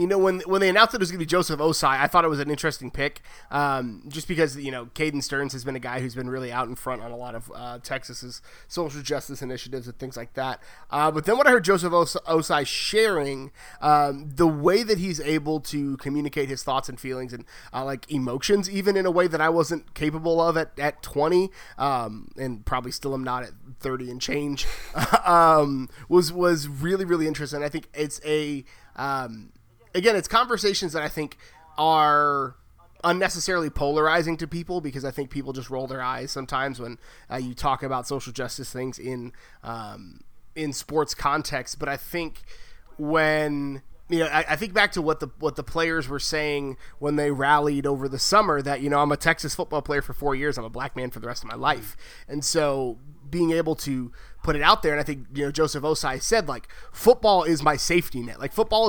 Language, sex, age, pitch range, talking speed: English, male, 20-39, 130-160 Hz, 215 wpm